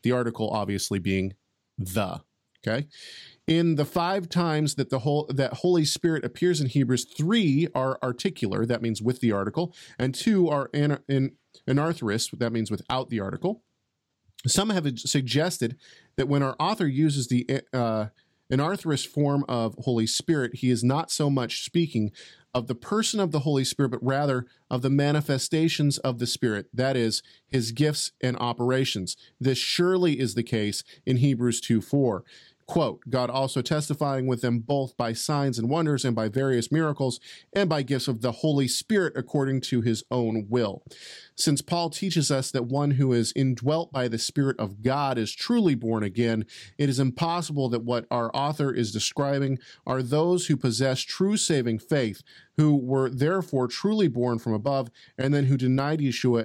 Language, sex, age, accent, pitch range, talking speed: English, male, 40-59, American, 120-150 Hz, 170 wpm